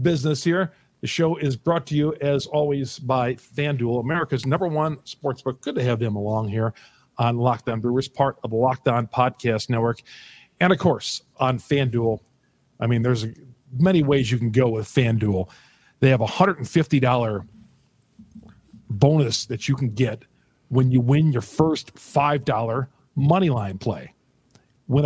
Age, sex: 40-59, male